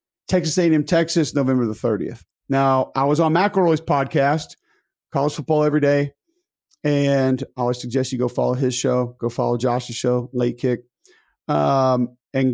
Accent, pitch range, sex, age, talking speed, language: American, 130-165 Hz, male, 40-59, 165 wpm, English